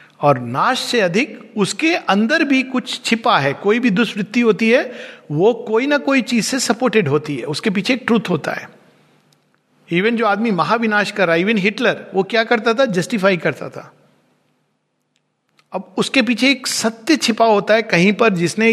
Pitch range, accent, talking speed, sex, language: 140-225 Hz, native, 180 wpm, male, Hindi